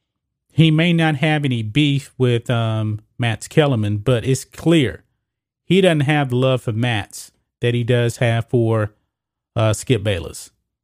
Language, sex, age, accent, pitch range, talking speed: English, male, 30-49, American, 120-145 Hz, 155 wpm